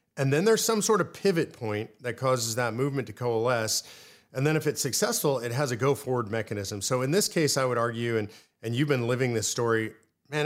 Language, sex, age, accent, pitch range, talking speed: English, male, 40-59, American, 115-135 Hz, 230 wpm